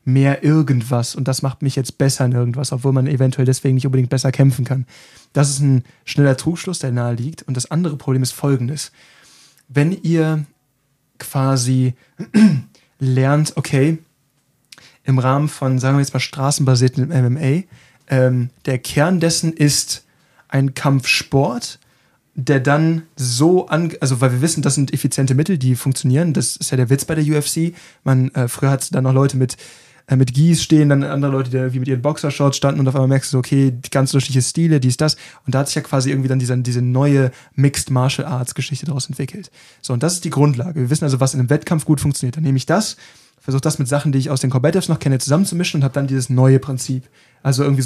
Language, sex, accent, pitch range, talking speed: German, male, German, 130-150 Hz, 205 wpm